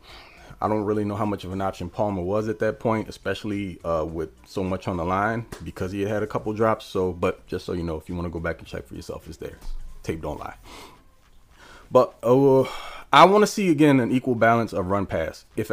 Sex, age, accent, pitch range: male, 30-49, American, 90-115 Hz